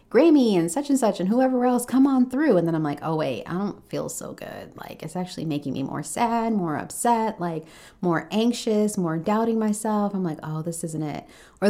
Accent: American